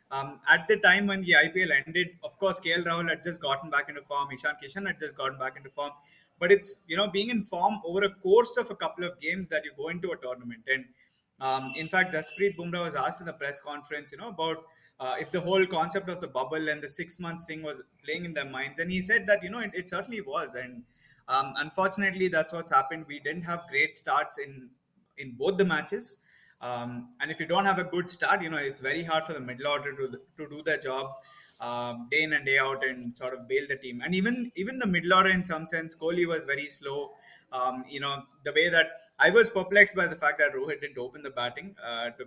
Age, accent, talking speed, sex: 20-39, Indian, 250 wpm, male